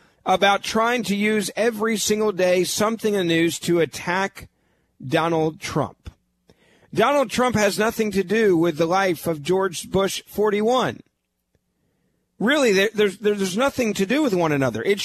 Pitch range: 155-205 Hz